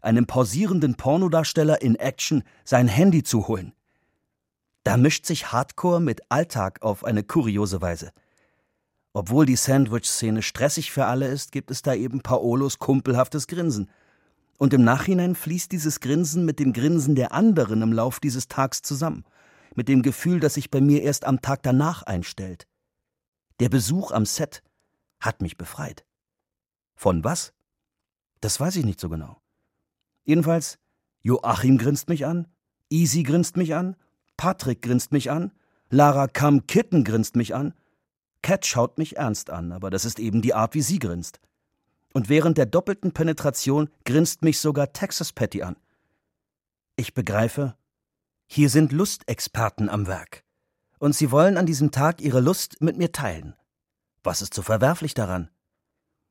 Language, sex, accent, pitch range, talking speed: German, male, German, 115-160 Hz, 150 wpm